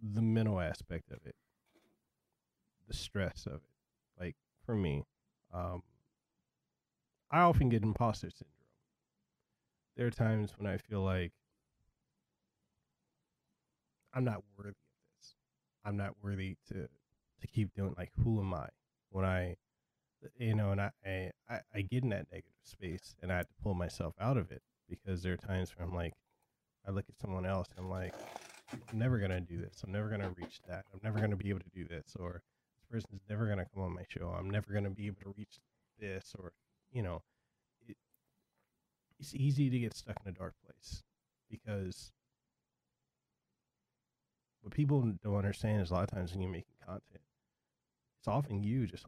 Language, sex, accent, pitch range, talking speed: English, male, American, 95-115 Hz, 180 wpm